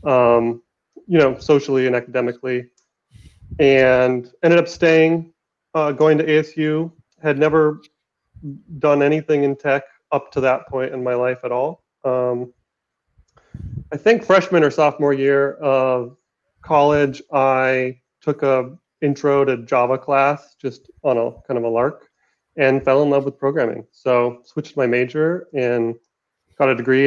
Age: 30-49